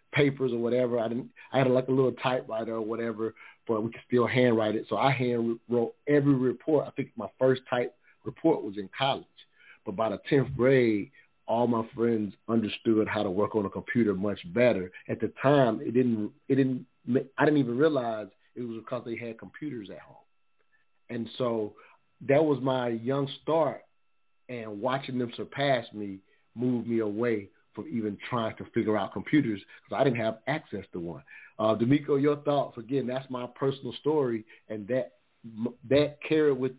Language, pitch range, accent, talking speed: English, 110-130 Hz, American, 180 wpm